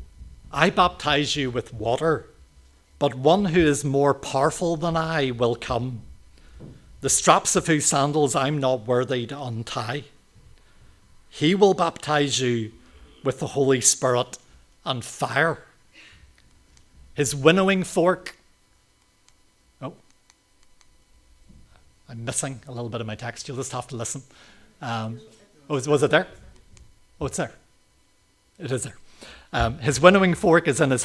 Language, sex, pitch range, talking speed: English, male, 115-145 Hz, 135 wpm